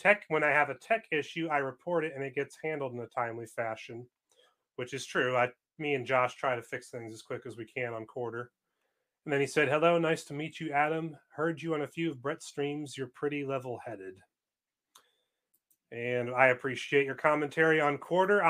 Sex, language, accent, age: male, English, American, 30-49